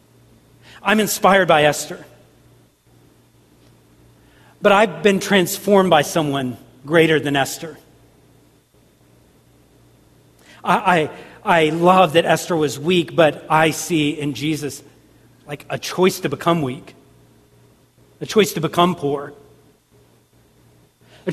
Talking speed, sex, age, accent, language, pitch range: 105 wpm, male, 40-59, American, English, 155-195 Hz